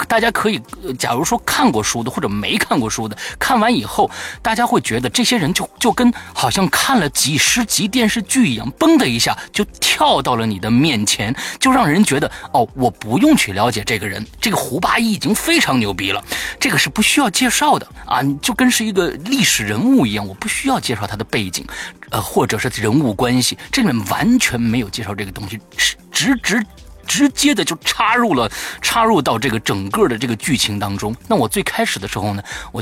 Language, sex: Chinese, male